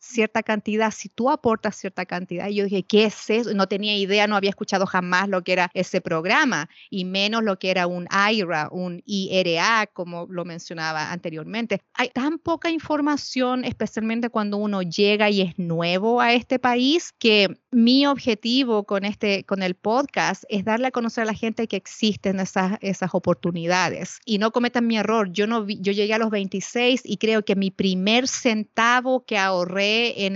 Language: Spanish